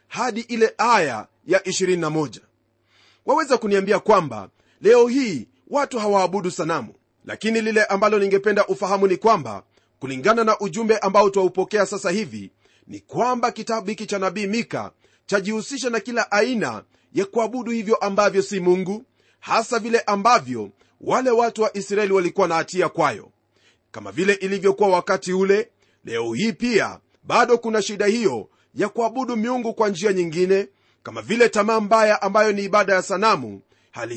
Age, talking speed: 30-49, 145 wpm